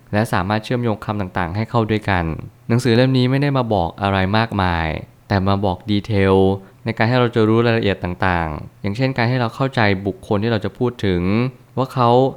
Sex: male